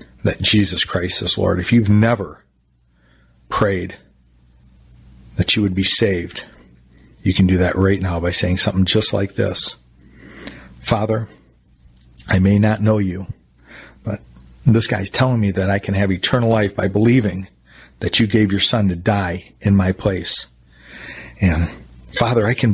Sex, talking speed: male, 155 wpm